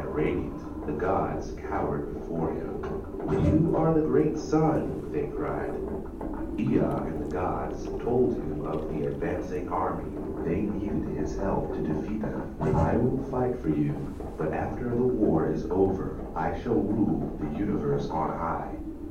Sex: male